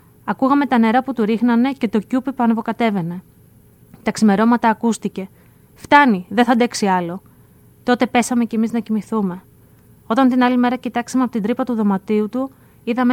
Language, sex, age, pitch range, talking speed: Greek, female, 20-39, 205-245 Hz, 165 wpm